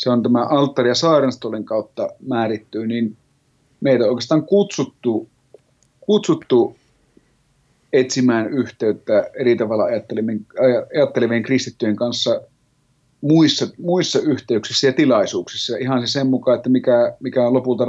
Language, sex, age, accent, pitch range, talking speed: Finnish, male, 30-49, native, 120-145 Hz, 115 wpm